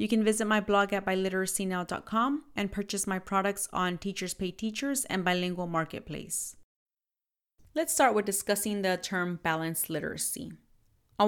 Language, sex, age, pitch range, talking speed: English, female, 30-49, 185-220 Hz, 145 wpm